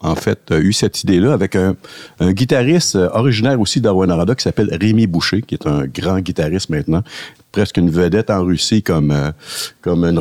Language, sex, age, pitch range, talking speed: French, male, 60-79, 75-95 Hz, 200 wpm